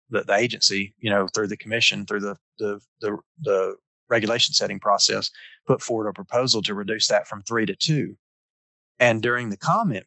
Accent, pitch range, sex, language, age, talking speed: American, 100-115 Hz, male, English, 30-49, 180 wpm